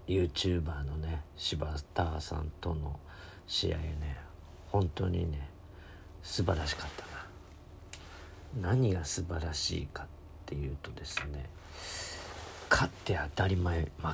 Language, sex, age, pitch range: Japanese, male, 50-69, 80-95 Hz